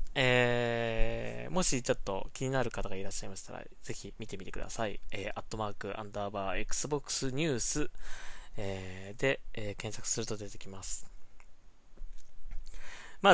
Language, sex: Japanese, male